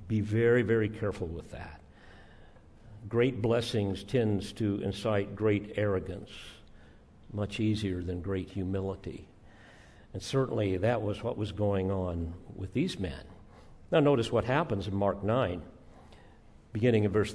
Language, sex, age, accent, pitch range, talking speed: English, male, 50-69, American, 100-135 Hz, 135 wpm